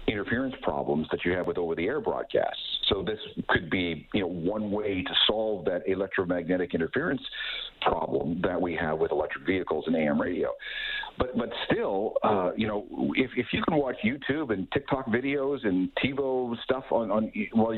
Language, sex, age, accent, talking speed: English, male, 50-69, American, 175 wpm